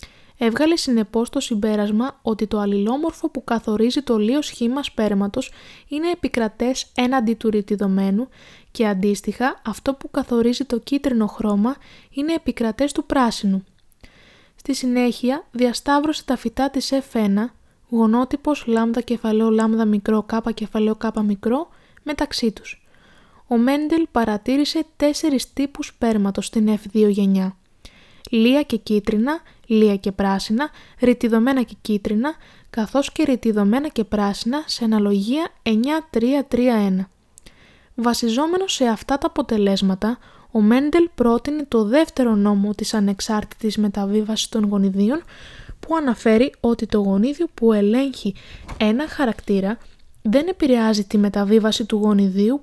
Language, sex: Greek, female